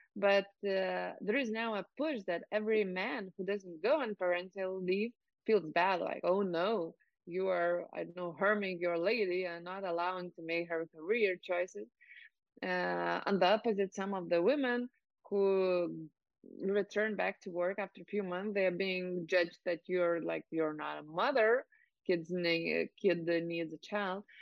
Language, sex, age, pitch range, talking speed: English, female, 20-39, 175-210 Hz, 175 wpm